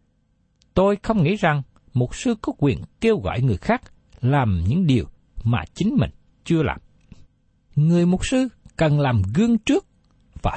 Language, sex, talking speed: Vietnamese, male, 160 wpm